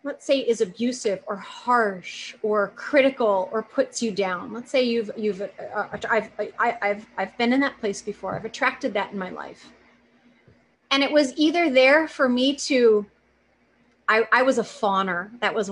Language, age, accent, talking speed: English, 30-49, American, 185 wpm